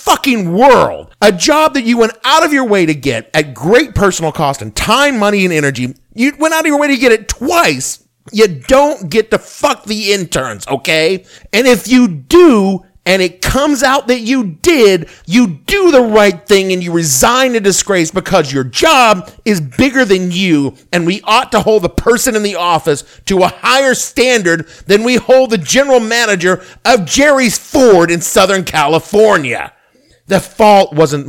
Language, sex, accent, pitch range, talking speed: English, male, American, 160-240 Hz, 185 wpm